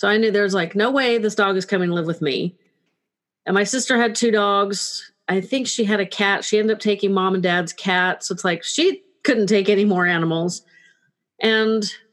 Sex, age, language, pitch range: female, 40-59, English, 185-225 Hz